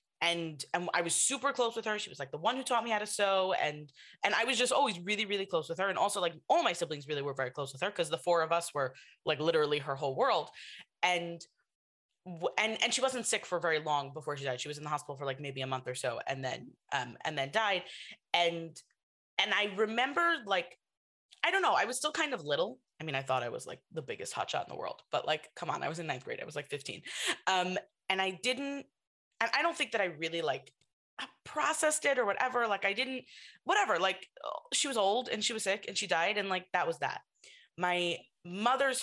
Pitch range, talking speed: 150-215 Hz, 250 wpm